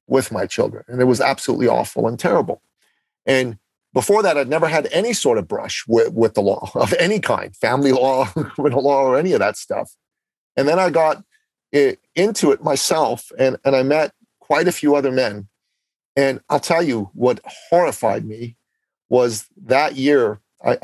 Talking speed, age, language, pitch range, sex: 180 wpm, 40-59, English, 110-145 Hz, male